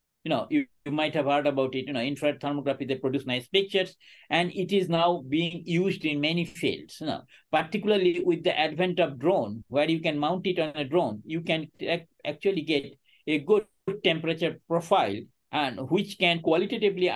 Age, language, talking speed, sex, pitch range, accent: 60-79, English, 190 wpm, male, 150-185 Hz, Indian